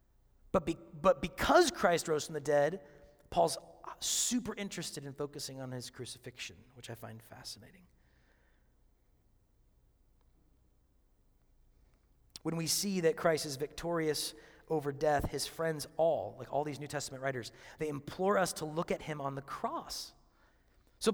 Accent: American